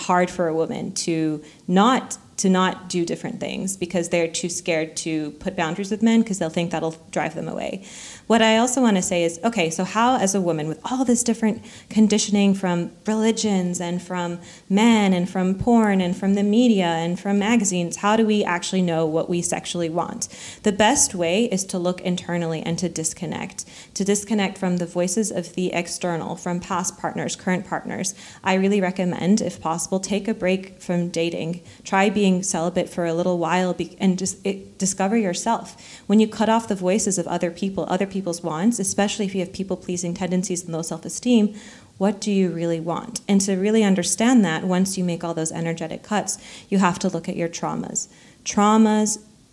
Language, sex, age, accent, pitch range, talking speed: English, female, 30-49, American, 175-205 Hz, 195 wpm